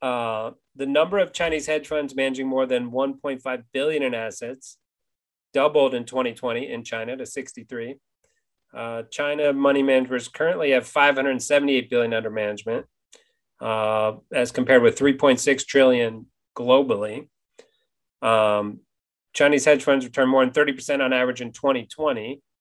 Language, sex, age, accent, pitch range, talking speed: English, male, 30-49, American, 120-145 Hz, 135 wpm